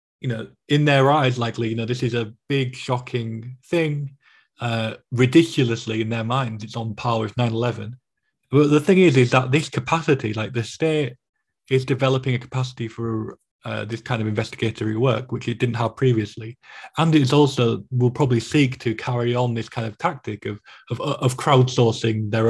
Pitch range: 115-135 Hz